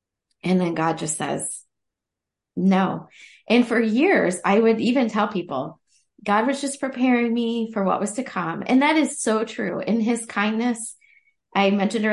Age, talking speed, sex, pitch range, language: 20-39, 170 wpm, female, 185-235 Hz, English